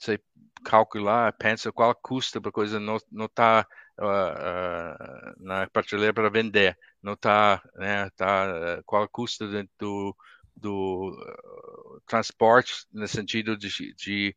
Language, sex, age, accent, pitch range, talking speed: Portuguese, male, 50-69, Brazilian, 95-110 Hz, 135 wpm